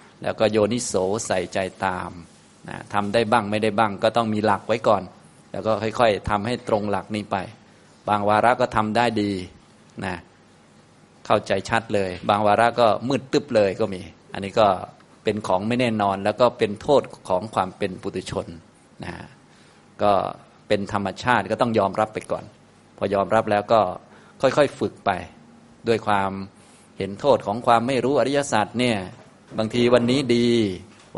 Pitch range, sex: 100-120 Hz, male